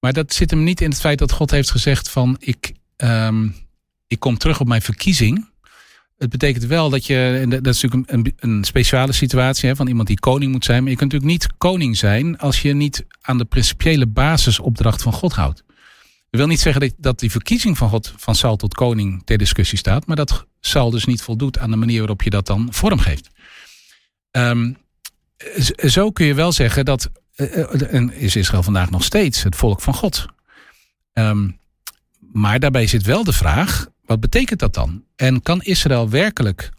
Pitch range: 110-145 Hz